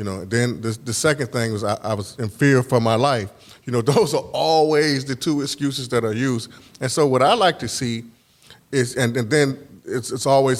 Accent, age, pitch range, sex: American, 30-49, 120-170 Hz, male